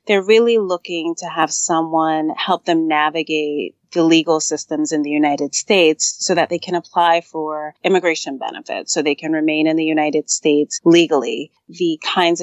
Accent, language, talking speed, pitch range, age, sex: American, English, 170 wpm, 155-190 Hz, 30-49, female